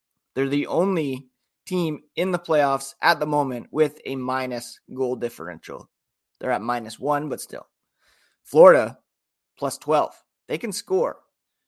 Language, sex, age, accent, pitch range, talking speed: English, male, 30-49, American, 120-150 Hz, 140 wpm